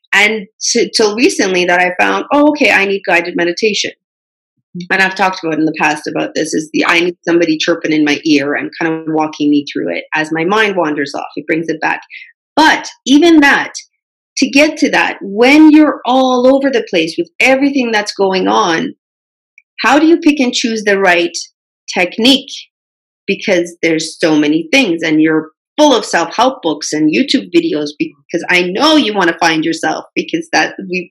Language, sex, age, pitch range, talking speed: English, female, 40-59, 170-270 Hz, 195 wpm